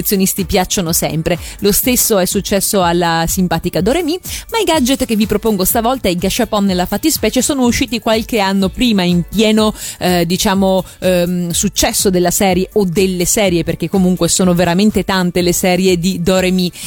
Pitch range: 185-230 Hz